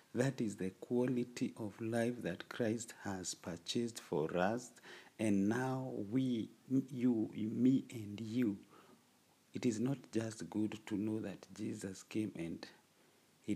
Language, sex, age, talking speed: English, male, 50-69, 135 wpm